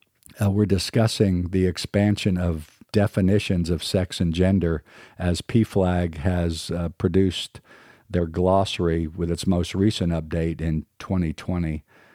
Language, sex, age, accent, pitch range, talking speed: English, male, 50-69, American, 80-100 Hz, 125 wpm